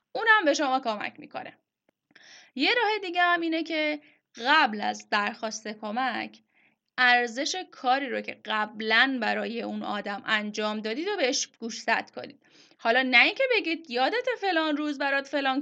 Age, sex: 10-29, female